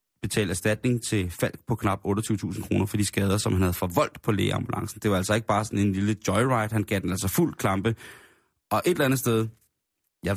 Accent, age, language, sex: native, 30-49, Danish, male